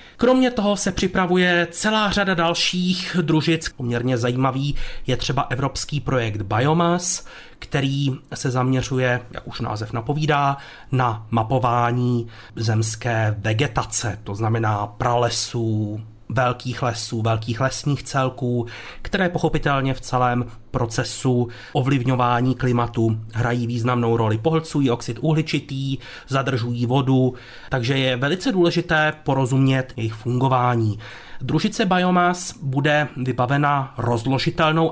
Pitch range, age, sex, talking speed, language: 120-155 Hz, 30-49, male, 105 wpm, Czech